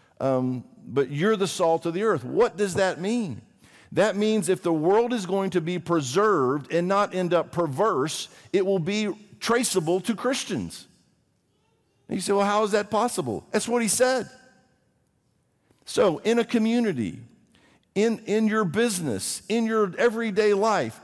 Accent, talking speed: American, 160 wpm